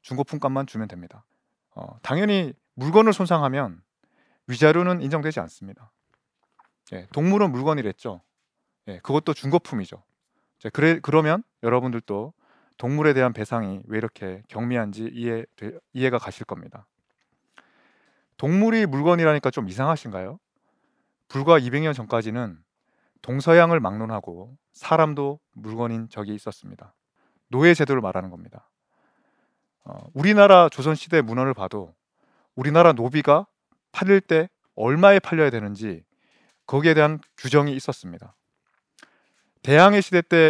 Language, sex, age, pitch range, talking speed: English, male, 30-49, 115-170 Hz, 95 wpm